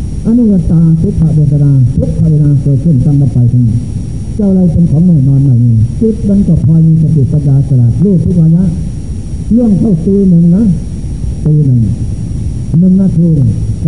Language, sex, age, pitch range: Thai, male, 50-69, 140-170 Hz